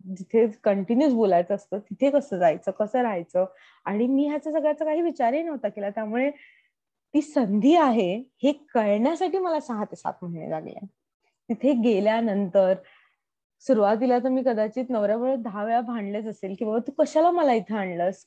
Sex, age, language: female, 20-39, Marathi